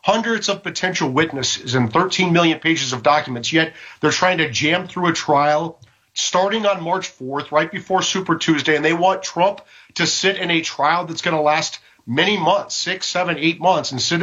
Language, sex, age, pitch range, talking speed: English, male, 40-59, 150-180 Hz, 200 wpm